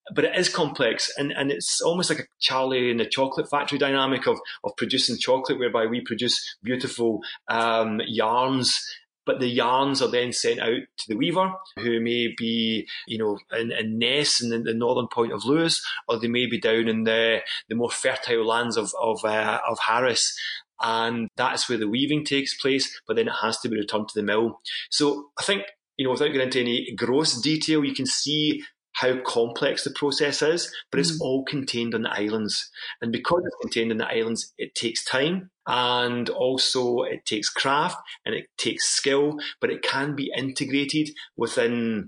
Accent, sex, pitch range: British, male, 115-145 Hz